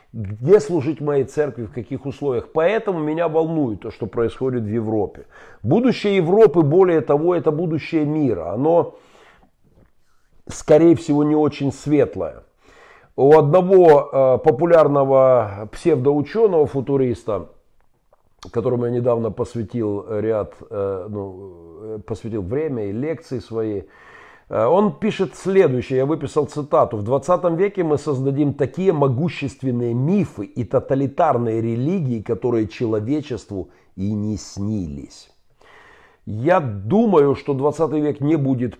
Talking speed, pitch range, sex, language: 110 wpm, 115-155 Hz, male, Russian